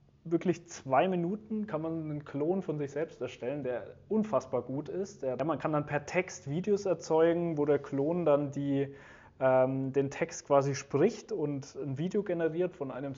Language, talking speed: German, 170 wpm